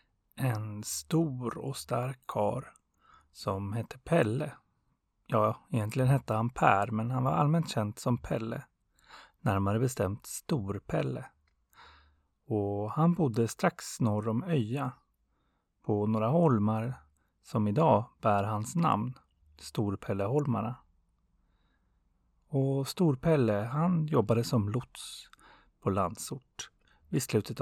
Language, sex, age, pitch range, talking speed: Swedish, male, 30-49, 105-140 Hz, 110 wpm